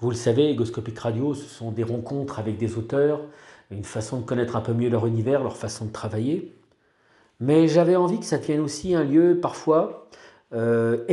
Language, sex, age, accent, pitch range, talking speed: French, male, 40-59, French, 120-160 Hz, 195 wpm